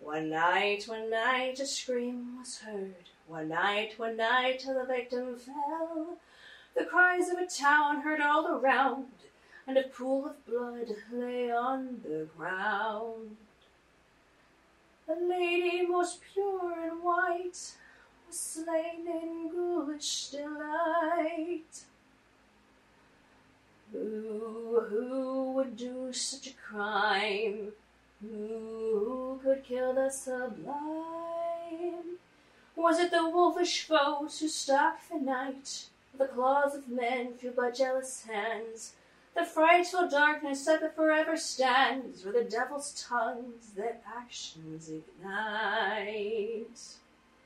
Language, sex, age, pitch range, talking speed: English, female, 30-49, 225-310 Hz, 110 wpm